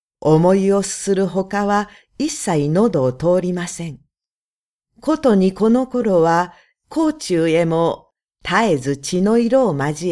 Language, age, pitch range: Japanese, 50-69, 160-220 Hz